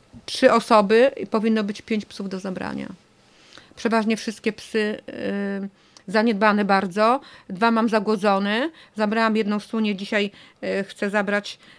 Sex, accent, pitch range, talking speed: female, native, 210-250 Hz, 115 wpm